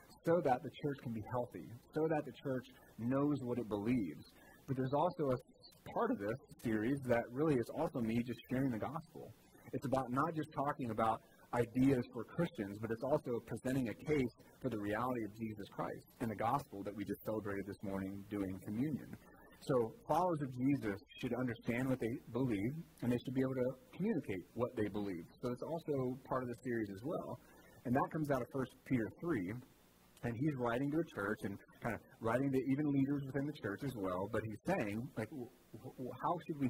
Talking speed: 210 wpm